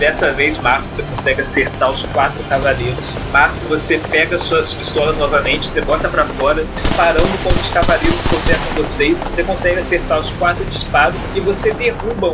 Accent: Brazilian